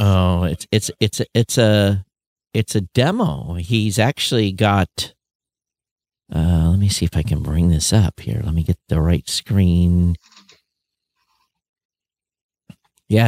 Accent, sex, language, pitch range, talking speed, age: American, male, English, 85-110 Hz, 145 wpm, 50-69